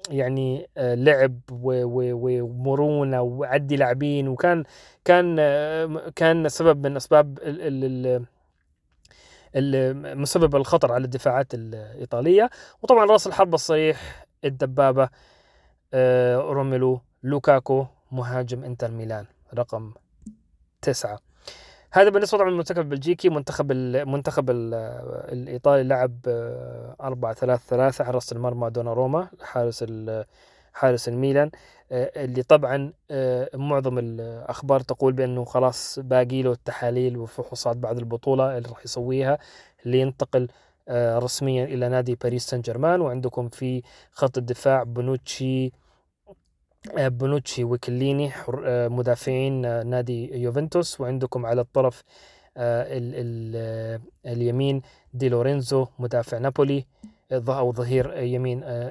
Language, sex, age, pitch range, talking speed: Arabic, male, 30-49, 125-140 Hz, 100 wpm